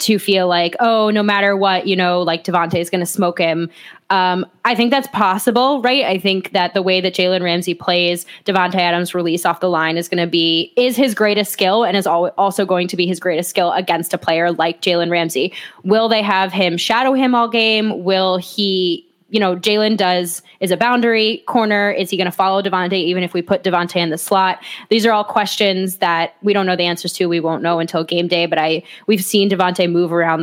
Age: 10-29